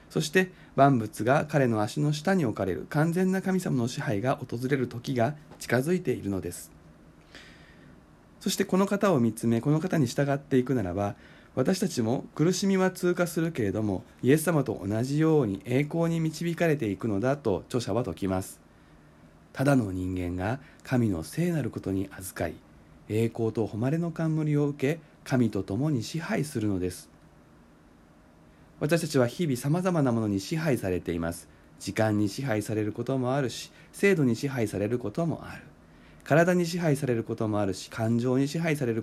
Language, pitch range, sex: Japanese, 100-150 Hz, male